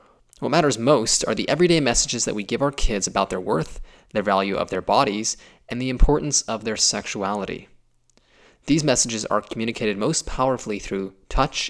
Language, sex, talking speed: English, male, 175 wpm